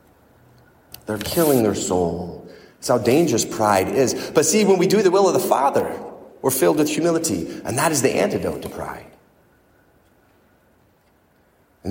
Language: English